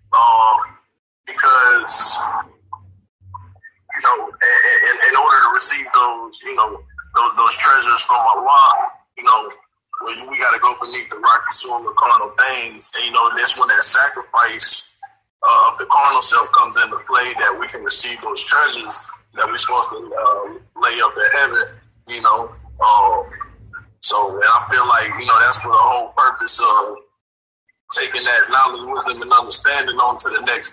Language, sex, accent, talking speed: English, male, American, 180 wpm